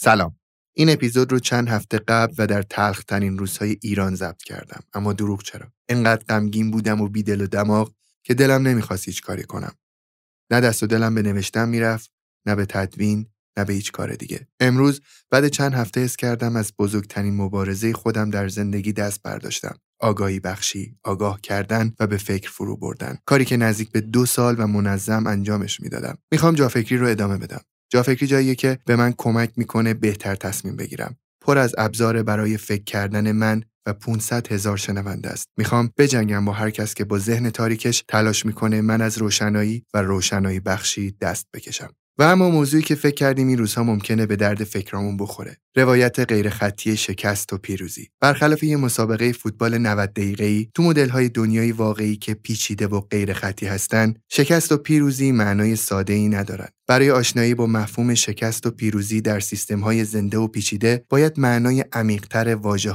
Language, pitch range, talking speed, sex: Persian, 100-120 Hz, 175 wpm, male